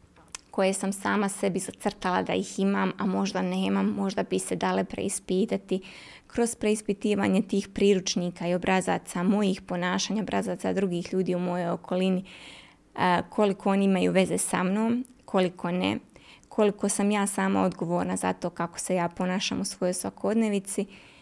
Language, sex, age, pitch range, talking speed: Croatian, female, 20-39, 185-215 Hz, 150 wpm